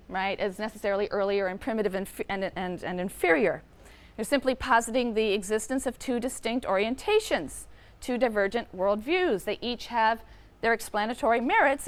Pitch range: 195-245 Hz